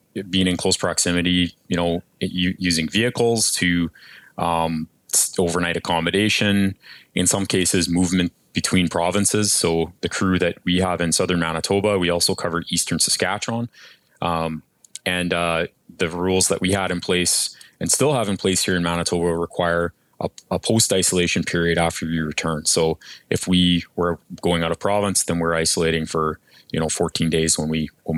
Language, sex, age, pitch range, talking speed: English, male, 20-39, 85-100 Hz, 165 wpm